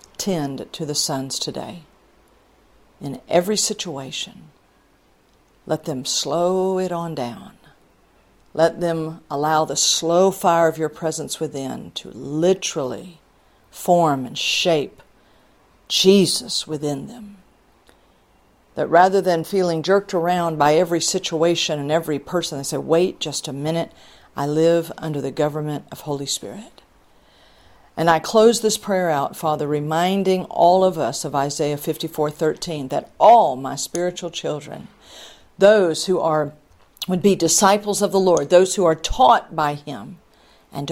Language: English